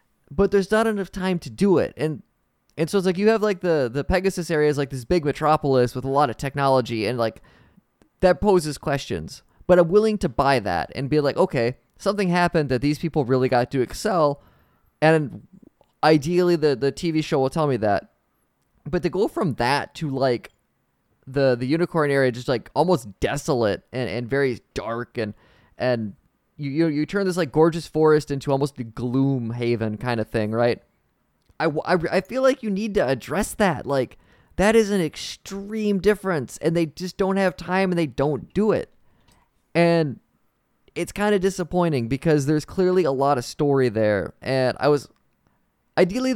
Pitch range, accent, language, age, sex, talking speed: 130-180 Hz, American, English, 20-39, male, 190 wpm